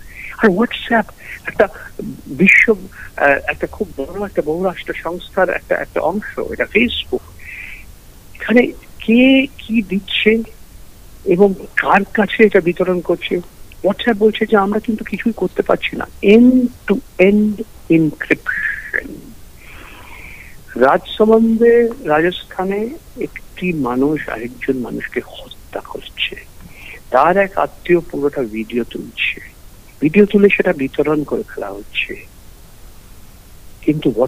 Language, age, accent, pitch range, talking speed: English, 60-79, Indian, 135-210 Hz, 105 wpm